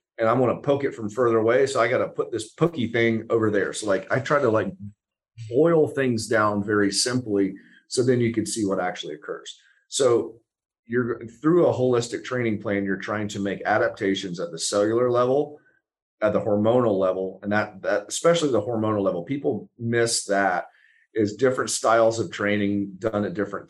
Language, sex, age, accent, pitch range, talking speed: English, male, 40-59, American, 100-120 Hz, 190 wpm